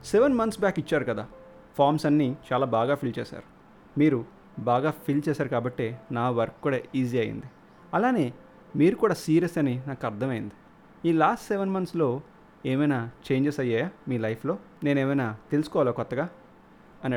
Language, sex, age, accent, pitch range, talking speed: Telugu, male, 30-49, native, 120-155 Hz, 145 wpm